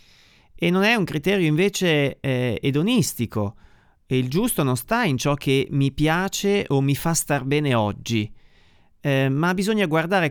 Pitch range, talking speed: 115-170 Hz, 165 wpm